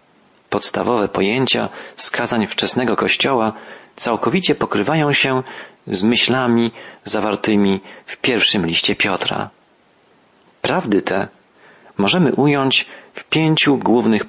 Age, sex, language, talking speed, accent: 40-59, male, Polish, 90 wpm, native